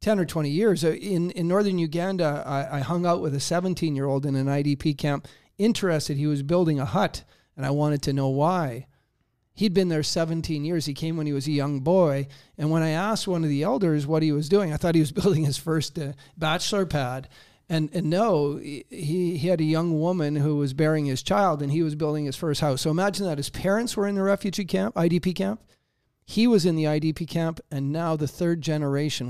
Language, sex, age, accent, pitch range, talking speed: English, male, 40-59, American, 145-175 Hz, 230 wpm